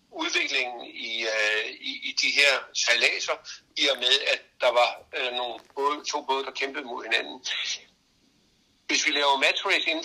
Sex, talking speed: male, 165 wpm